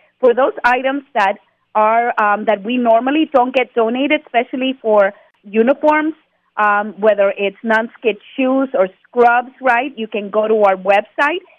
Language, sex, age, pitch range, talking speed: English, female, 40-59, 215-275 Hz, 150 wpm